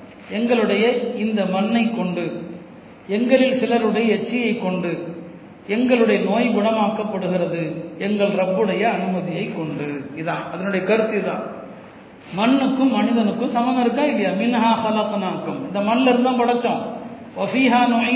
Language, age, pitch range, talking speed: Tamil, 40-59, 205-250 Hz, 105 wpm